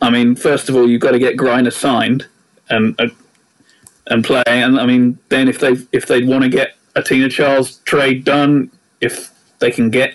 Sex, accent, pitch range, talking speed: male, British, 125-155 Hz, 205 wpm